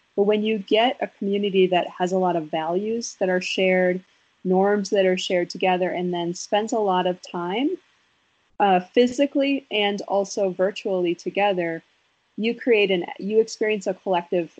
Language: English